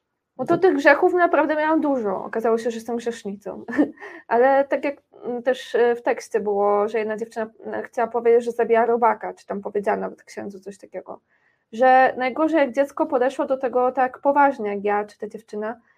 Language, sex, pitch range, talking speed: Polish, female, 225-260 Hz, 180 wpm